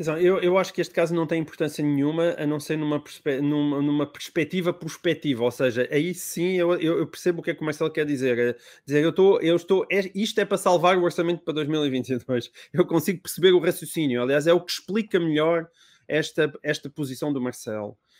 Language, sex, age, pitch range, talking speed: Portuguese, male, 20-39, 140-175 Hz, 210 wpm